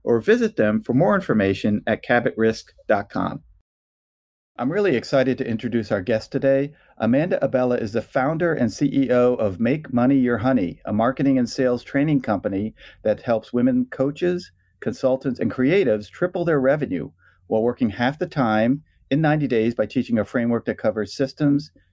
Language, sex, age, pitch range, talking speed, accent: English, male, 40-59, 110-130 Hz, 160 wpm, American